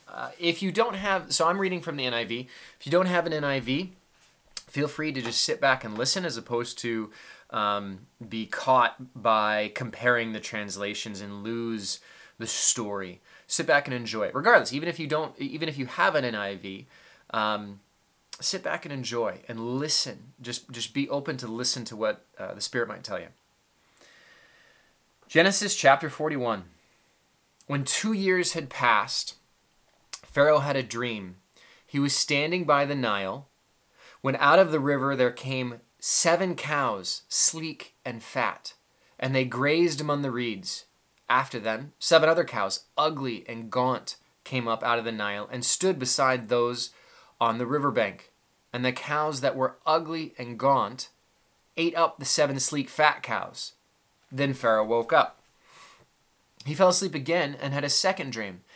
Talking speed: 165 wpm